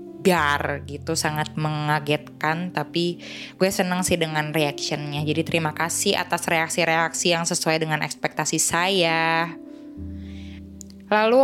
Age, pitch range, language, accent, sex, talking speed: 20-39, 155-185 Hz, English, Indonesian, female, 105 wpm